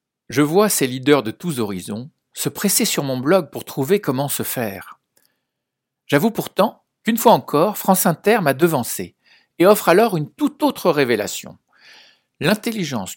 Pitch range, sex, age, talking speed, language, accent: 115-180 Hz, male, 60-79, 155 wpm, French, French